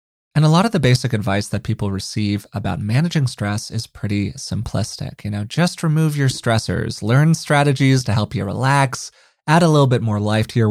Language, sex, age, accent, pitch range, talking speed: English, male, 20-39, American, 105-140 Hz, 200 wpm